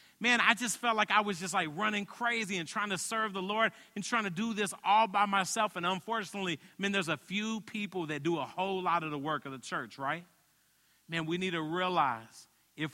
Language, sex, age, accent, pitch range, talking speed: English, male, 40-59, American, 150-195 Hz, 230 wpm